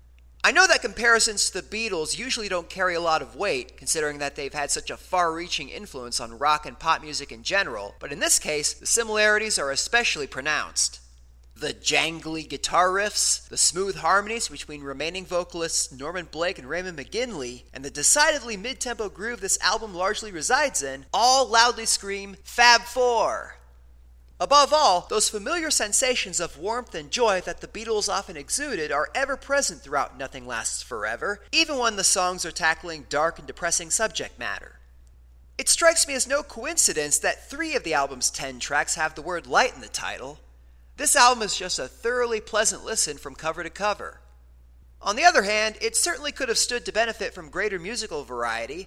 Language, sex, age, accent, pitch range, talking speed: English, male, 30-49, American, 140-230 Hz, 180 wpm